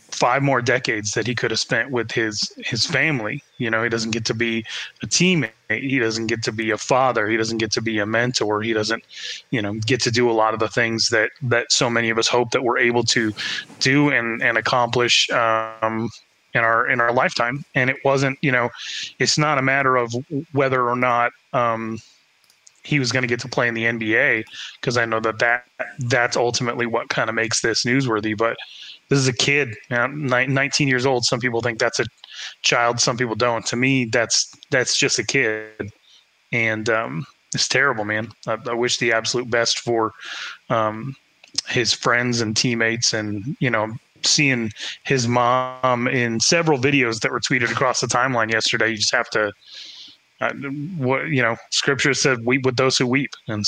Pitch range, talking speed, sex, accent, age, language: 115-130 Hz, 200 wpm, male, American, 20-39, English